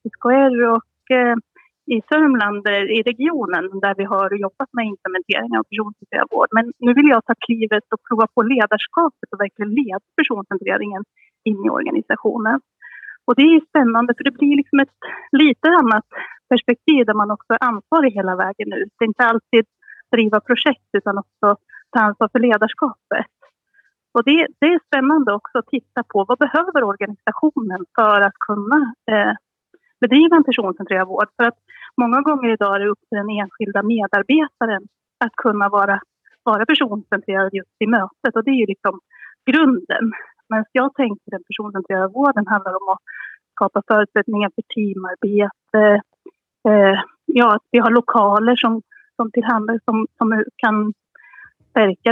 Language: Swedish